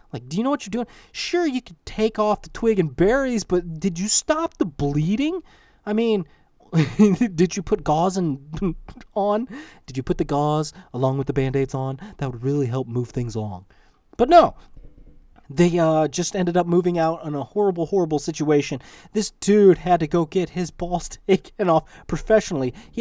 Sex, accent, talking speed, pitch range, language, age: male, American, 195 wpm, 145-230 Hz, English, 30-49